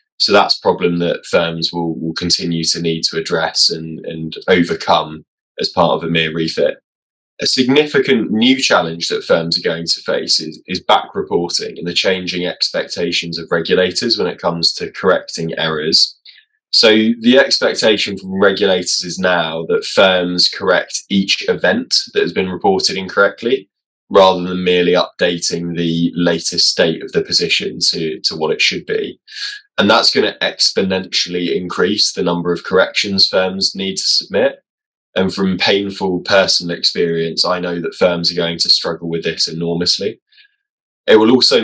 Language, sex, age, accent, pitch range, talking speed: English, male, 10-29, British, 85-110 Hz, 165 wpm